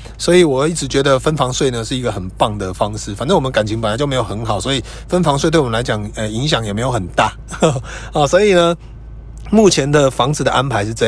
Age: 30-49